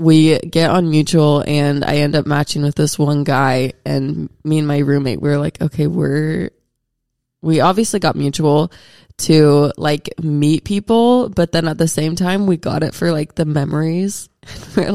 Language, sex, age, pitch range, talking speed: English, female, 20-39, 145-165 Hz, 175 wpm